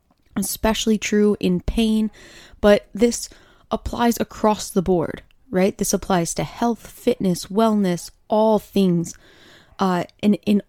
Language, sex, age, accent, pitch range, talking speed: English, female, 20-39, American, 180-235 Hz, 125 wpm